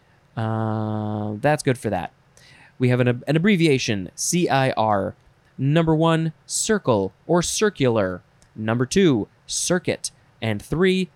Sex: male